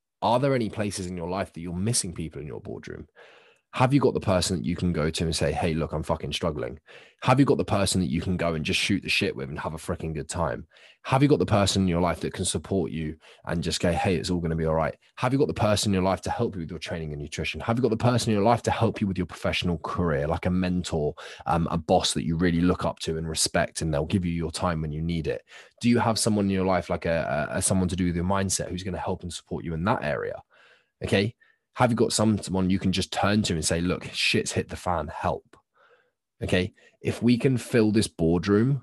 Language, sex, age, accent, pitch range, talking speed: English, male, 20-39, British, 85-105 Hz, 280 wpm